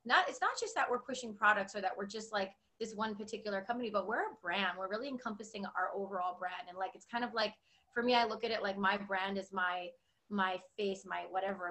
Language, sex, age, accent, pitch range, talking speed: English, female, 20-39, American, 185-235 Hz, 245 wpm